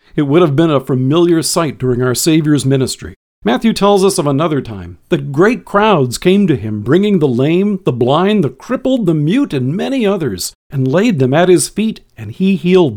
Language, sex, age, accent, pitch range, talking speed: English, male, 50-69, American, 130-195 Hz, 205 wpm